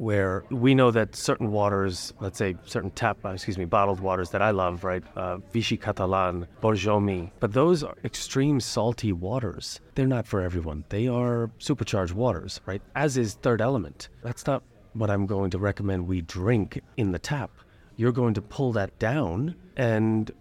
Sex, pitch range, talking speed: male, 95-125 Hz, 175 wpm